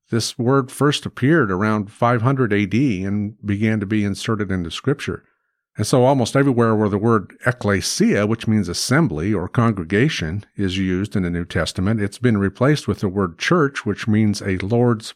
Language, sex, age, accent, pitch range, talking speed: English, male, 50-69, American, 100-125 Hz, 175 wpm